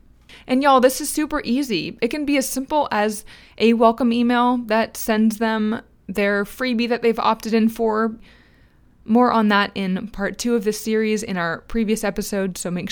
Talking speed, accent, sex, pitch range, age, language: 185 wpm, American, female, 200-245 Hz, 20-39, English